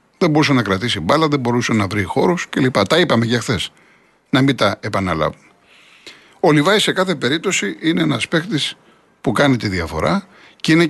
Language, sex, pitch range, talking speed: Greek, male, 115-155 Hz, 180 wpm